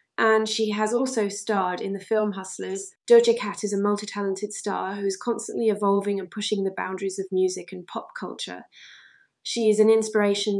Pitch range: 195-215 Hz